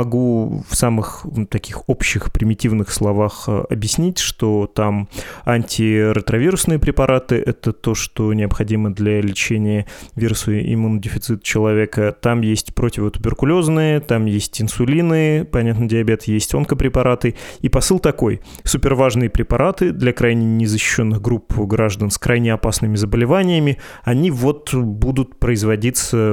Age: 20-39